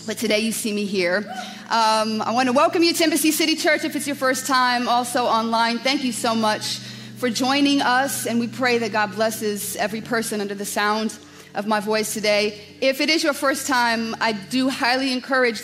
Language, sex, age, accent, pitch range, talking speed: English, female, 40-59, American, 210-255 Hz, 210 wpm